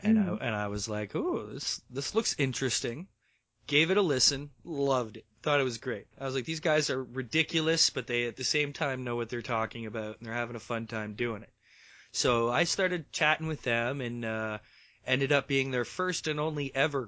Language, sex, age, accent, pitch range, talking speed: English, male, 30-49, American, 110-135 Hz, 220 wpm